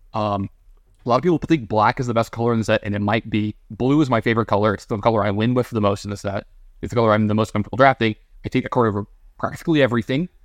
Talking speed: 280 wpm